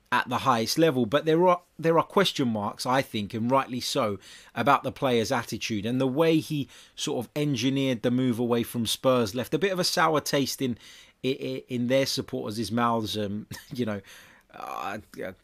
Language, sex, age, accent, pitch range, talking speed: English, male, 20-39, British, 105-130 Hz, 190 wpm